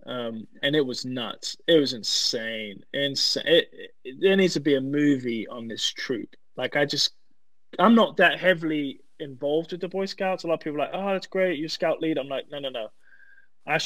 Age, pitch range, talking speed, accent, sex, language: 20-39, 140-195 Hz, 215 wpm, British, male, English